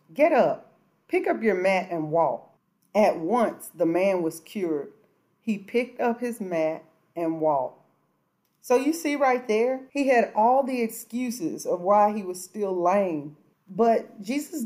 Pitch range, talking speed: 175-230 Hz, 160 wpm